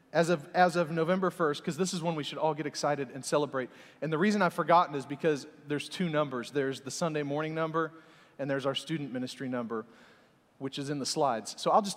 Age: 40-59